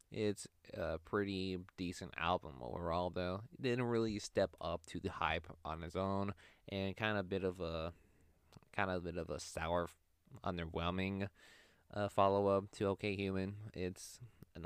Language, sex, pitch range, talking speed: English, male, 85-100 Hz, 165 wpm